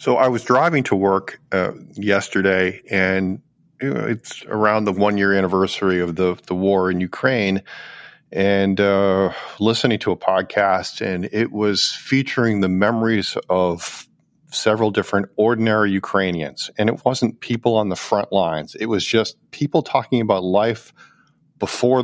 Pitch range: 95-115 Hz